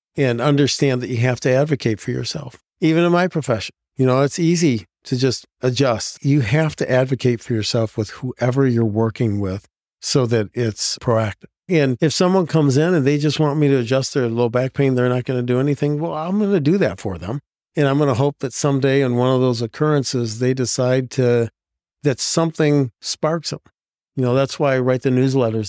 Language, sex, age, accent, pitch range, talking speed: English, male, 50-69, American, 115-145 Hz, 215 wpm